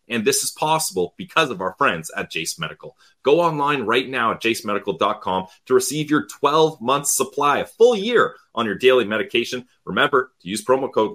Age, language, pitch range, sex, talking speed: 30-49, English, 115-155 Hz, male, 185 wpm